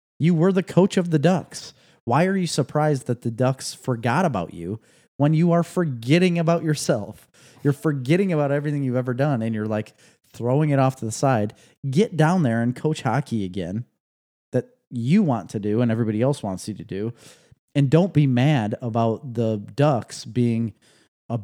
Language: English